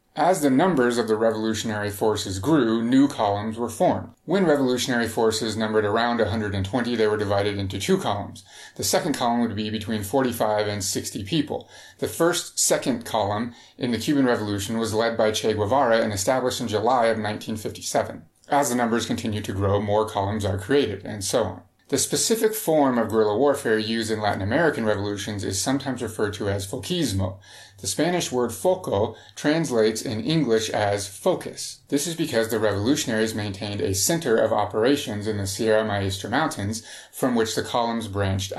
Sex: male